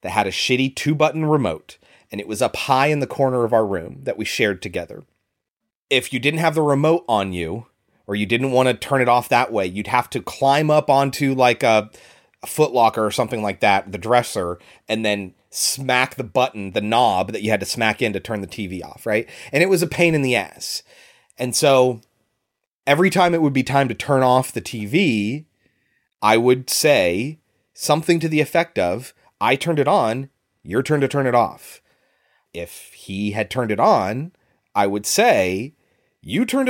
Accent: American